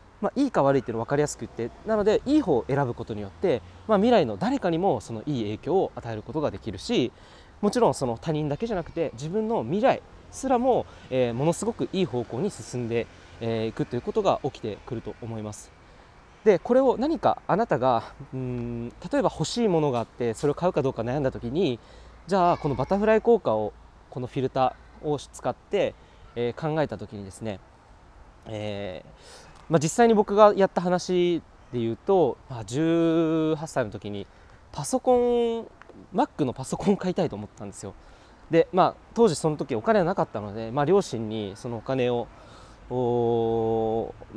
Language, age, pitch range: Japanese, 20-39, 115-180 Hz